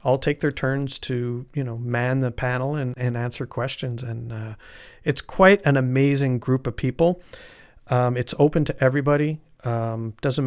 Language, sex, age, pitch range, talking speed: English, male, 40-59, 120-145 Hz, 170 wpm